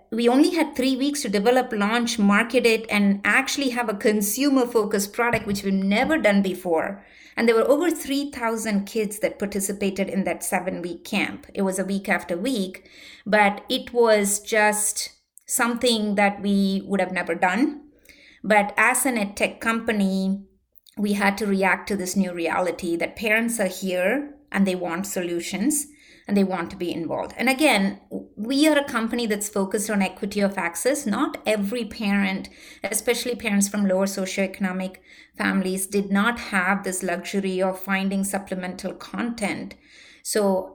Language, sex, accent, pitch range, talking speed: English, female, Indian, 190-235 Hz, 160 wpm